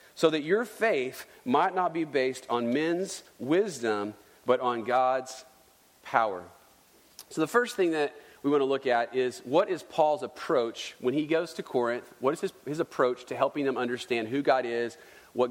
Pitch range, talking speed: 125-175 Hz, 185 wpm